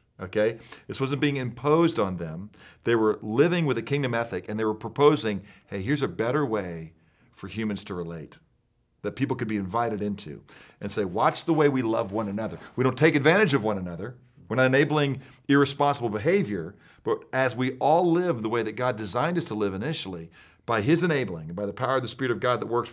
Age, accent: 40-59, American